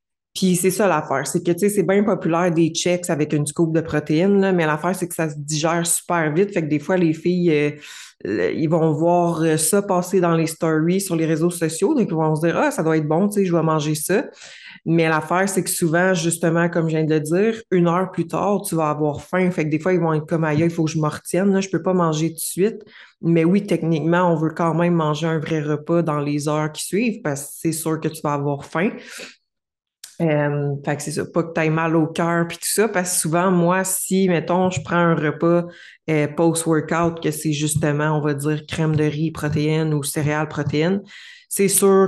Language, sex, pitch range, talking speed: French, female, 155-180 Hz, 250 wpm